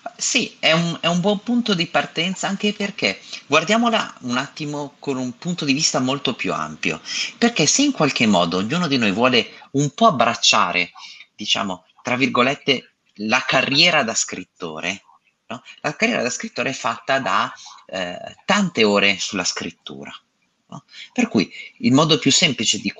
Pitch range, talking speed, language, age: 130-210 Hz, 150 wpm, Italian, 30-49